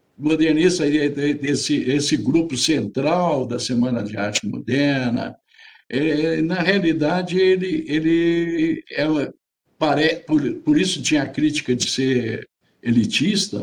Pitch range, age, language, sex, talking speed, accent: 135-210 Hz, 60-79, Portuguese, male, 115 wpm, Brazilian